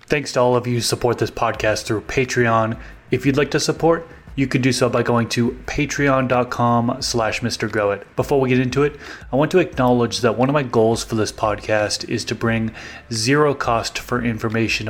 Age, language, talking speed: 20-39, English, 210 wpm